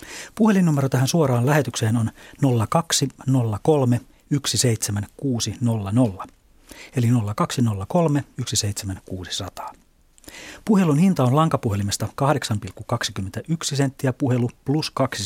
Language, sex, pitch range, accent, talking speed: Finnish, male, 115-150 Hz, native, 70 wpm